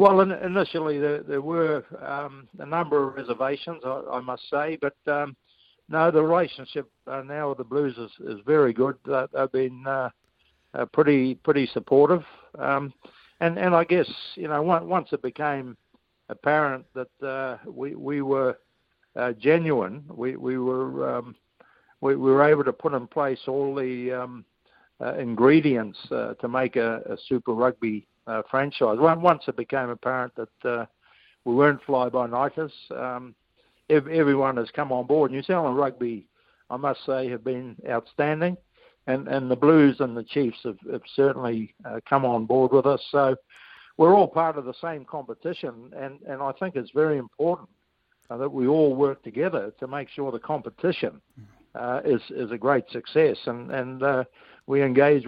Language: English